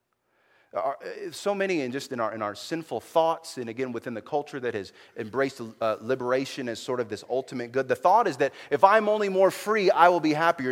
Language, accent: English, American